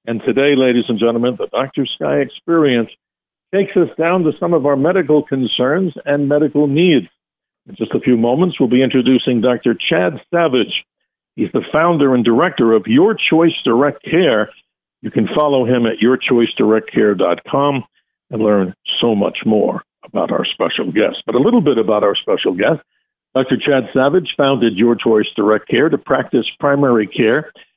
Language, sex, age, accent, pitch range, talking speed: English, male, 60-79, American, 120-155 Hz, 165 wpm